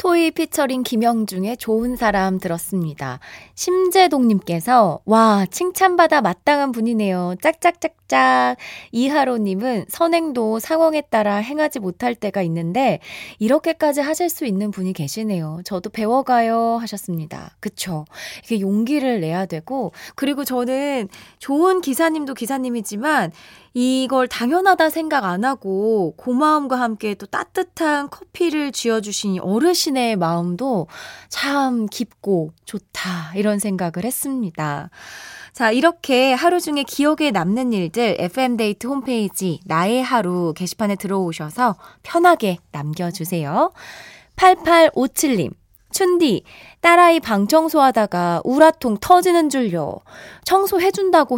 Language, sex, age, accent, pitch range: Korean, female, 20-39, native, 190-285 Hz